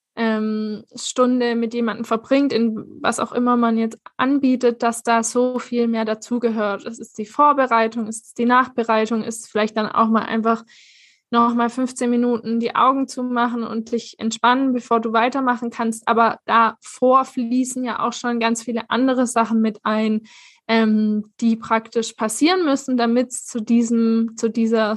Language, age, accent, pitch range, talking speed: German, 20-39, German, 225-250 Hz, 165 wpm